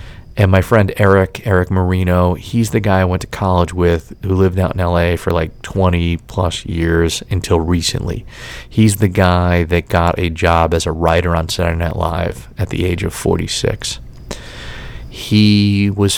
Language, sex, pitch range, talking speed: English, male, 90-115 Hz, 175 wpm